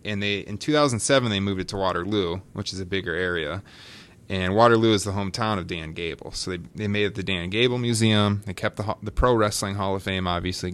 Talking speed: 230 wpm